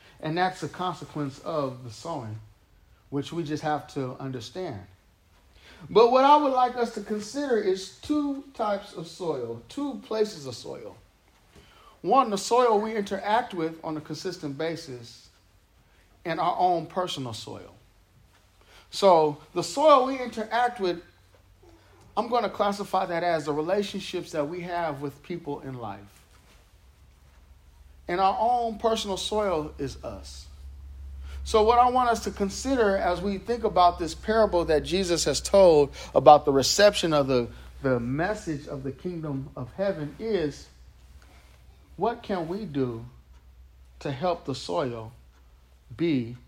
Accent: American